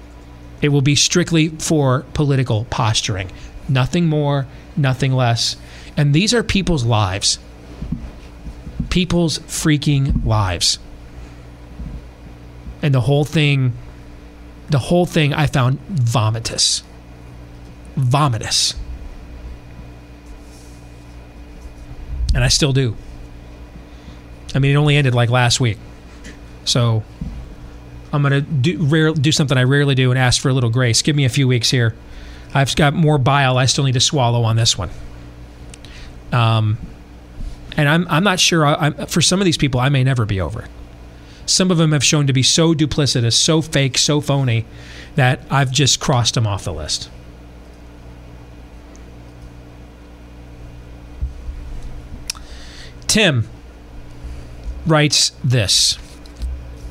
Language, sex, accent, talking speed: English, male, American, 125 wpm